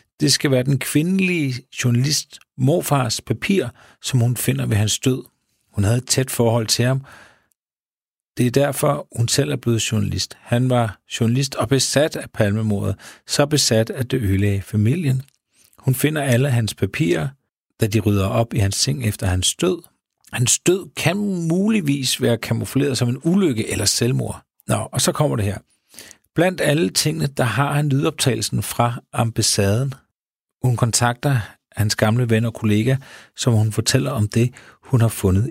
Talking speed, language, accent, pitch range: 165 wpm, Danish, native, 105-135 Hz